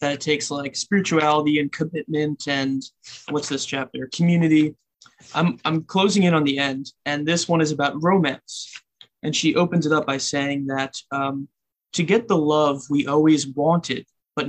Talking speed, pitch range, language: 175 wpm, 140-155 Hz, English